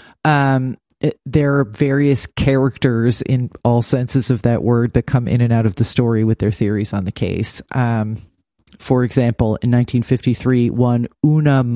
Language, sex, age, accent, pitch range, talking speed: English, male, 30-49, American, 115-140 Hz, 155 wpm